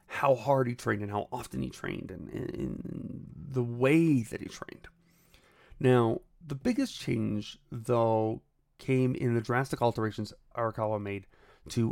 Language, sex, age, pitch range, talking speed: English, male, 30-49, 105-130 Hz, 145 wpm